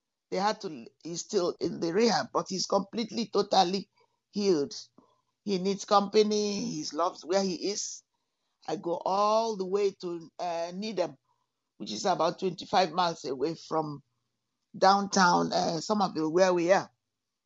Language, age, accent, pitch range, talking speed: English, 50-69, Nigerian, 175-220 Hz, 150 wpm